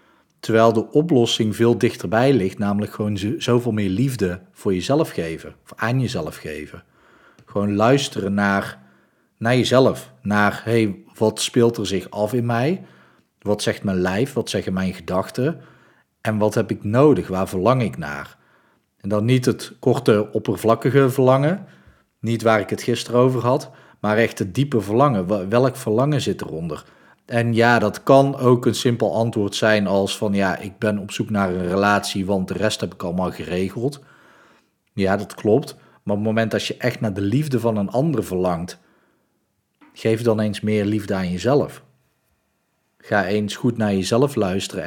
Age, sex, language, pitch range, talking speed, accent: 40-59, male, Dutch, 100-125 Hz, 175 wpm, Dutch